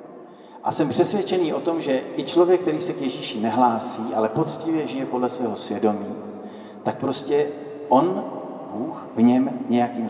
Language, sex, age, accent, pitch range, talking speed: Czech, male, 40-59, native, 115-145 Hz, 155 wpm